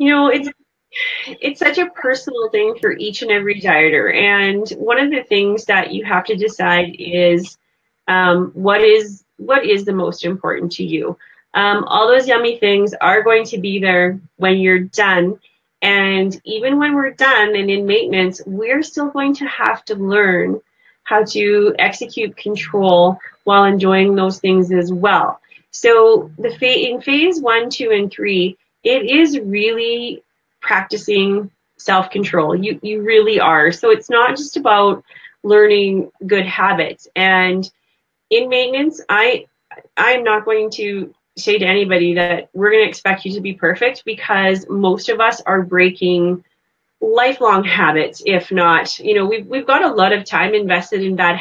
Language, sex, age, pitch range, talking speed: English, female, 20-39, 185-265 Hz, 160 wpm